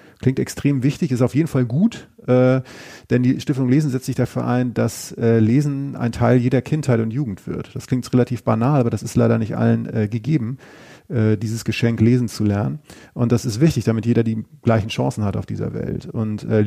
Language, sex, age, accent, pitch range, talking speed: German, male, 30-49, German, 115-130 Hz, 215 wpm